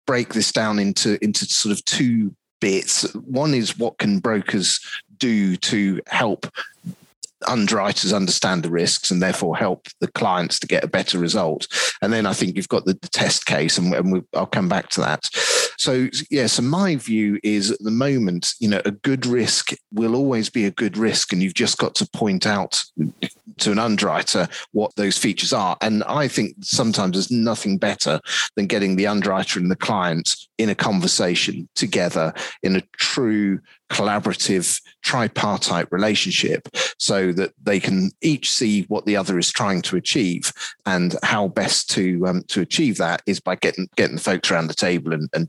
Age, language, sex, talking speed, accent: 30-49, English, male, 185 wpm, British